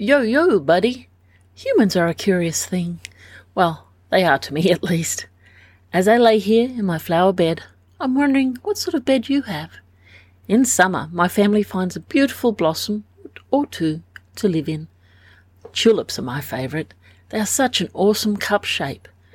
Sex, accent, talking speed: female, Australian, 170 wpm